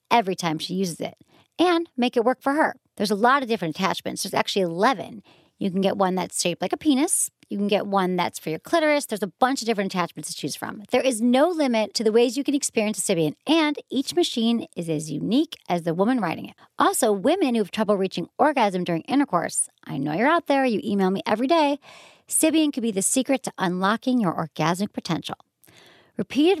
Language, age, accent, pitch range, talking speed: English, 40-59, American, 185-260 Hz, 225 wpm